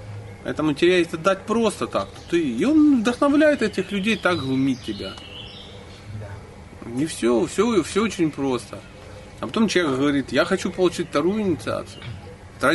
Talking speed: 135 wpm